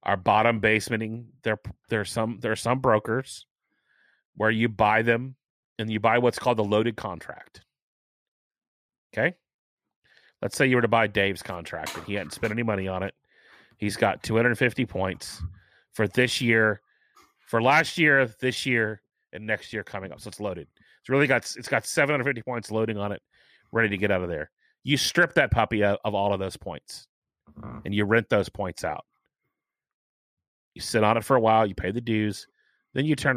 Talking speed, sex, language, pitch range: 185 wpm, male, English, 100-130 Hz